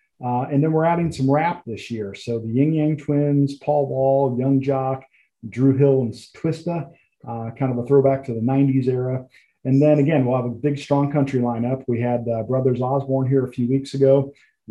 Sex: male